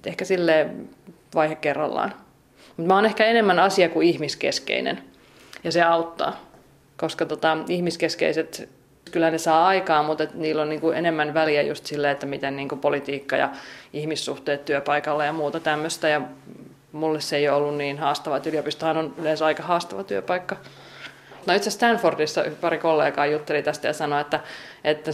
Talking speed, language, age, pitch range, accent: 160 wpm, Finnish, 30-49, 150-175 Hz, native